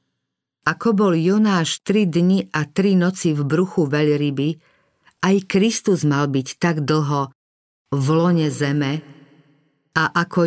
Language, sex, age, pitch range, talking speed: Slovak, female, 50-69, 145-180 Hz, 125 wpm